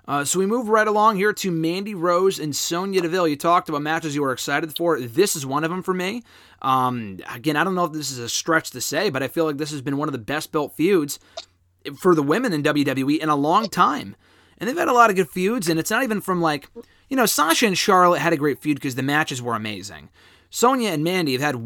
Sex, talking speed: male, 260 wpm